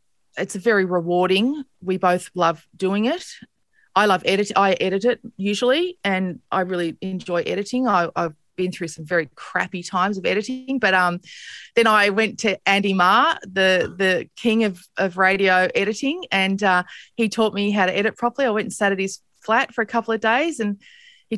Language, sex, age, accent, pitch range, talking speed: English, female, 20-39, Australian, 180-230 Hz, 195 wpm